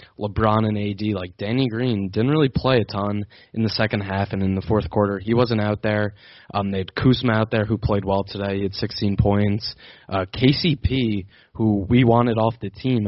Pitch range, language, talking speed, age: 100-115 Hz, English, 210 wpm, 20-39